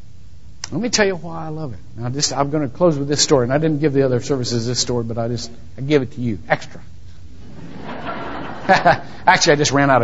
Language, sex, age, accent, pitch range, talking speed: English, male, 50-69, American, 100-150 Hz, 235 wpm